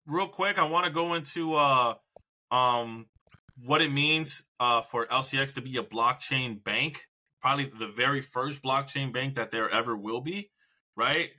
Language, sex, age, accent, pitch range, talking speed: English, male, 20-39, American, 125-150 Hz, 170 wpm